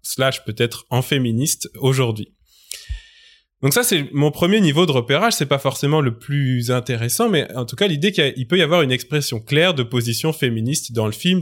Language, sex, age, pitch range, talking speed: French, male, 20-39, 125-170 Hz, 205 wpm